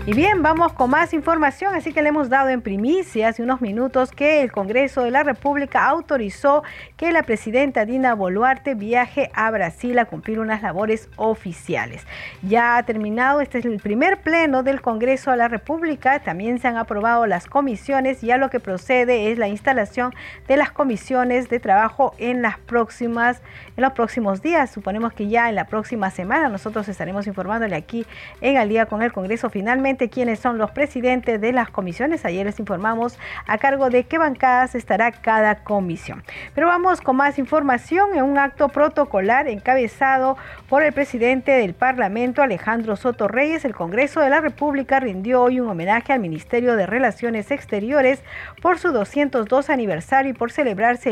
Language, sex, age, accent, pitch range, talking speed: Spanish, female, 40-59, American, 220-275 Hz, 175 wpm